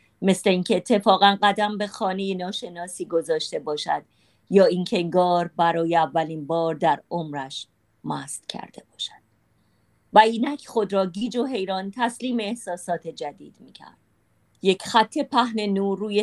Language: Persian